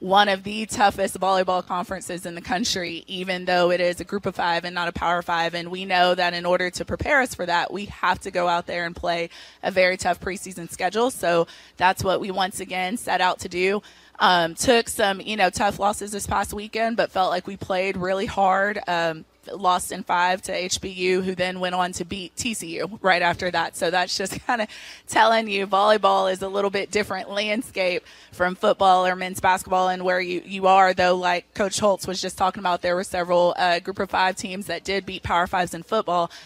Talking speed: 225 wpm